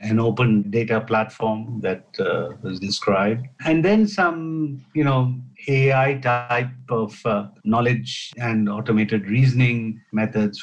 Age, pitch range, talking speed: 50-69, 100-125 Hz, 125 wpm